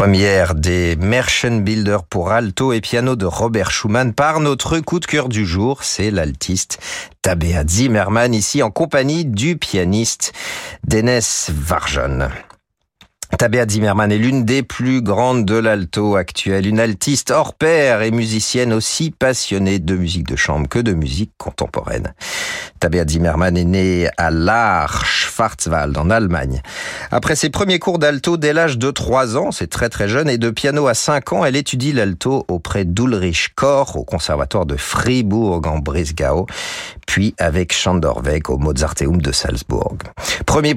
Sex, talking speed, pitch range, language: male, 150 wpm, 90-130 Hz, French